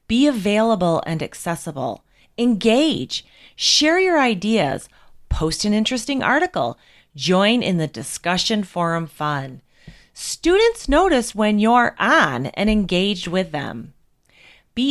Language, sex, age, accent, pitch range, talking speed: English, female, 30-49, American, 160-240 Hz, 115 wpm